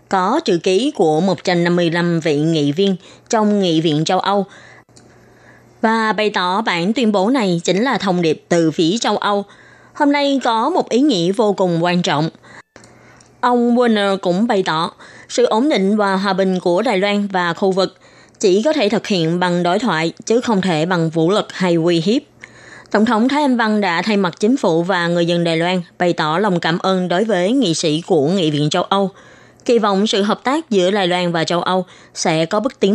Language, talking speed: Vietnamese, 210 wpm